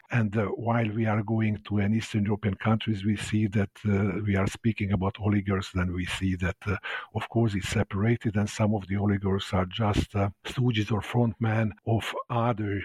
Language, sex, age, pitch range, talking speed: English, male, 50-69, 105-125 Hz, 195 wpm